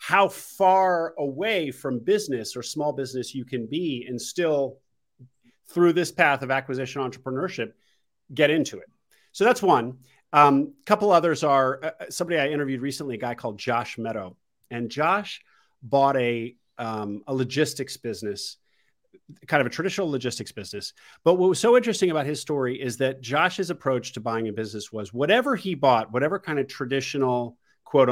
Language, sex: English, male